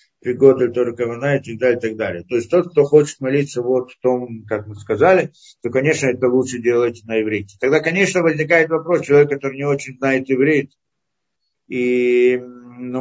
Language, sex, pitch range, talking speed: Russian, male, 110-140 Hz, 170 wpm